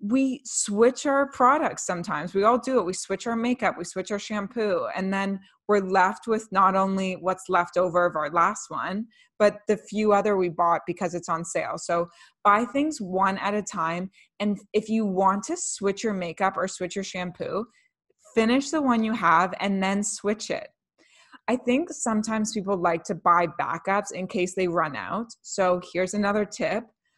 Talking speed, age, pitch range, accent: 190 wpm, 20-39, 180-220 Hz, American